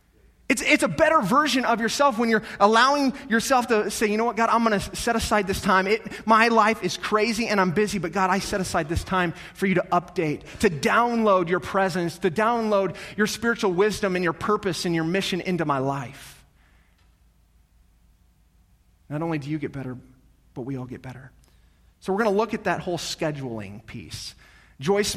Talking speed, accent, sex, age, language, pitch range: 195 wpm, American, male, 30-49, English, 145-210 Hz